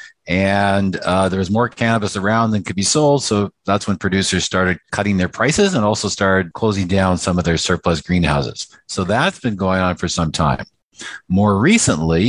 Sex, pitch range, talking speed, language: male, 85-105 Hz, 190 wpm, English